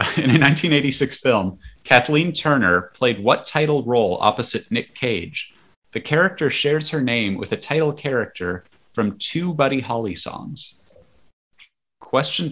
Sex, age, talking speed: male, 30-49, 135 wpm